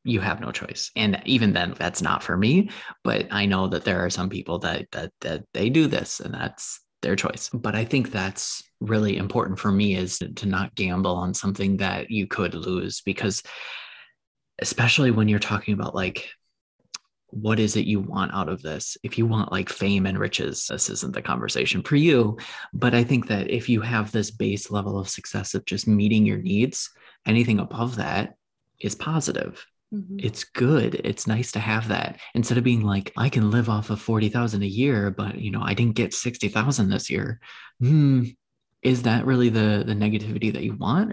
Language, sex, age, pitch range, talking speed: English, male, 20-39, 100-120 Hz, 195 wpm